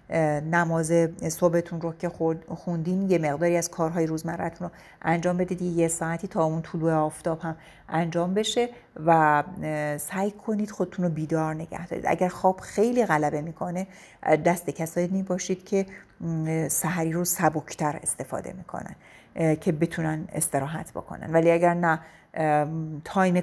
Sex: female